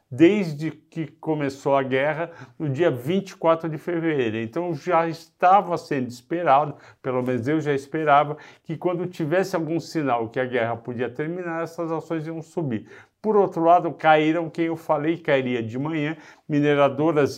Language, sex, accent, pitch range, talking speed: Portuguese, male, Brazilian, 135-165 Hz, 155 wpm